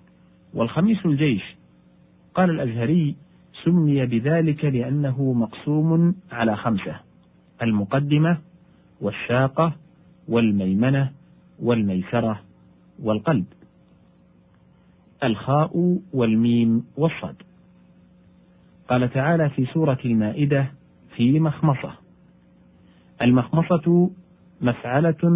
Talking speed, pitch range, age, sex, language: 65 wpm, 120-165 Hz, 40-59, male, Arabic